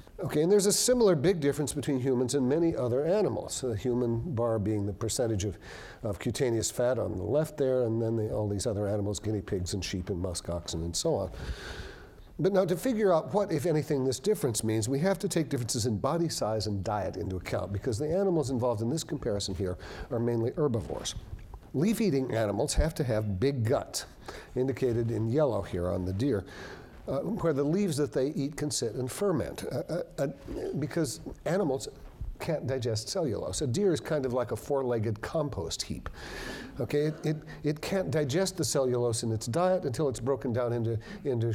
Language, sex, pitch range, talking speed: English, male, 110-155 Hz, 200 wpm